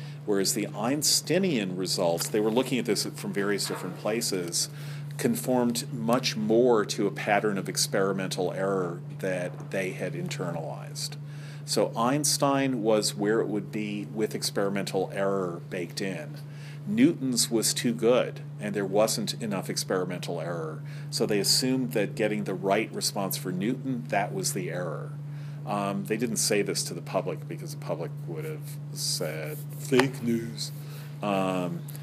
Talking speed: 150 wpm